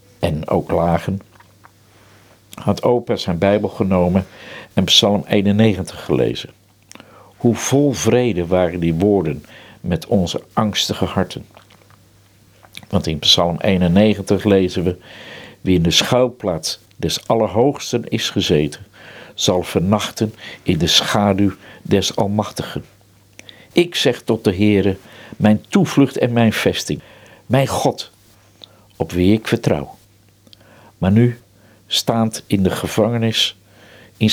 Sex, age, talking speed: male, 50-69, 115 wpm